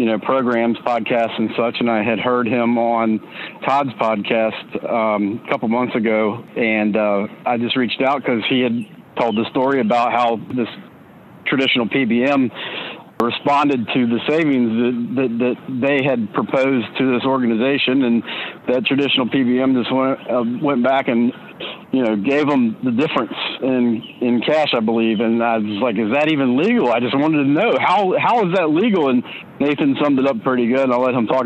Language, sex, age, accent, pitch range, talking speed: English, male, 50-69, American, 115-130 Hz, 190 wpm